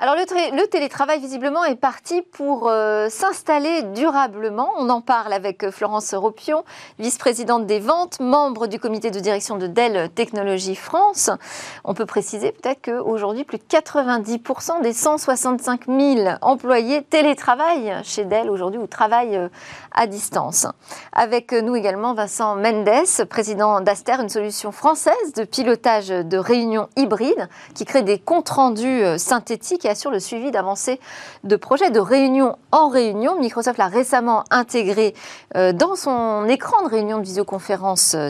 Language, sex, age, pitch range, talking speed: French, female, 40-59, 210-280 Hz, 145 wpm